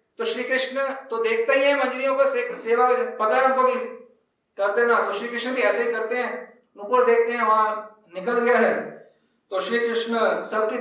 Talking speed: 65 wpm